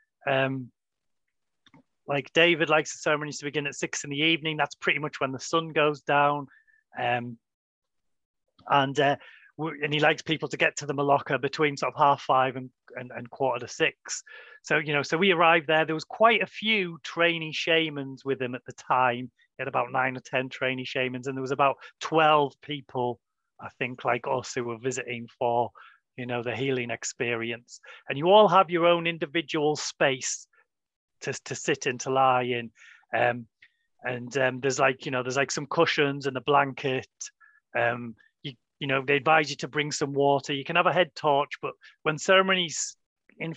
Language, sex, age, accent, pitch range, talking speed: English, male, 30-49, British, 130-160 Hz, 195 wpm